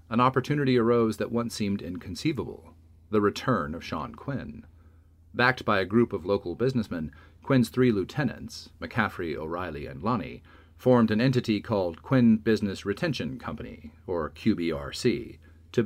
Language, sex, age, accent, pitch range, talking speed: English, male, 40-59, American, 85-120 Hz, 140 wpm